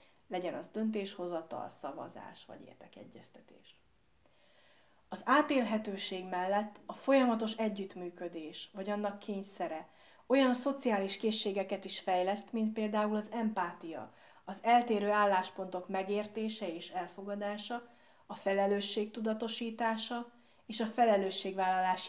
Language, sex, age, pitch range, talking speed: Hungarian, female, 30-49, 185-225 Hz, 100 wpm